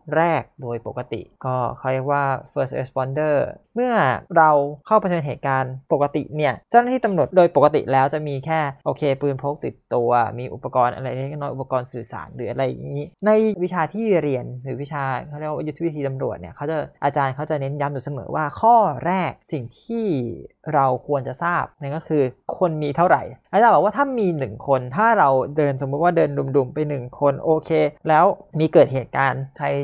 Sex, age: male, 20-39